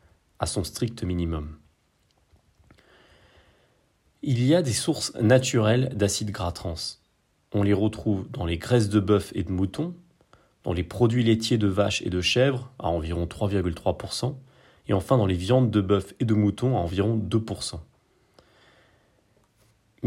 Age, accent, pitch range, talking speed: 40-59, French, 95-125 Hz, 145 wpm